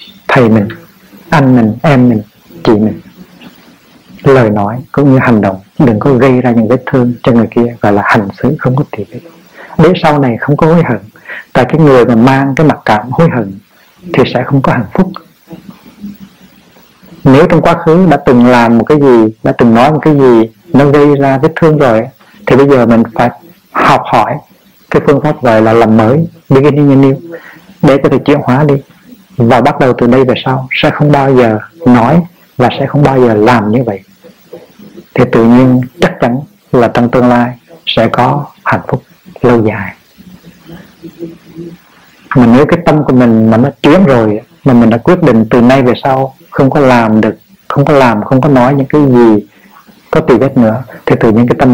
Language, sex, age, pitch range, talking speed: Vietnamese, male, 60-79, 120-155 Hz, 200 wpm